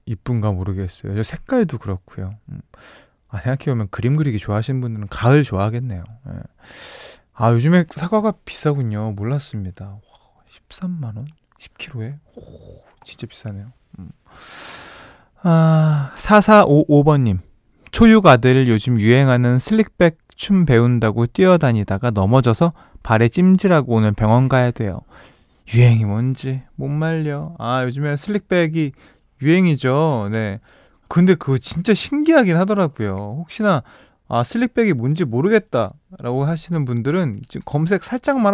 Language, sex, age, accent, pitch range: Korean, male, 20-39, native, 115-170 Hz